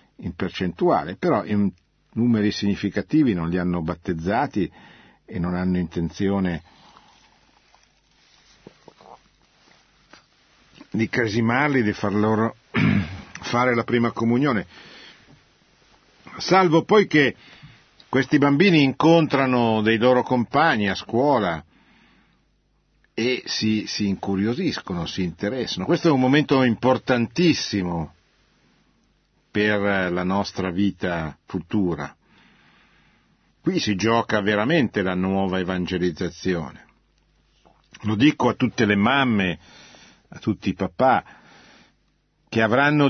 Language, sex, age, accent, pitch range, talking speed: Italian, male, 50-69, native, 95-125 Hz, 95 wpm